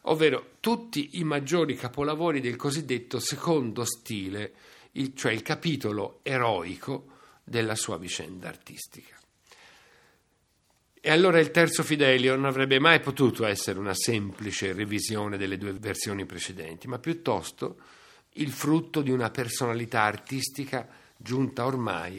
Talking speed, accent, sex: 120 wpm, native, male